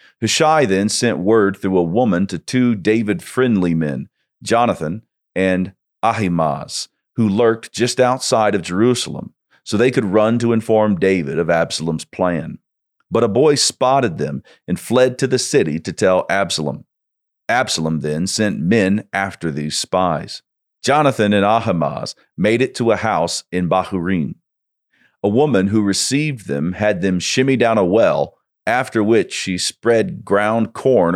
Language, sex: English, male